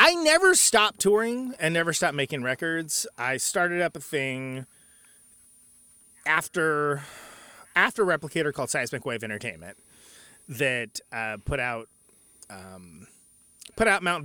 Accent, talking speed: American, 120 wpm